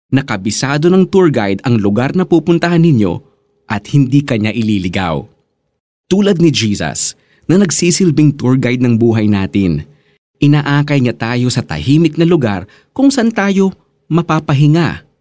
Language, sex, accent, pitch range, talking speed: Filipino, male, native, 110-165 Hz, 135 wpm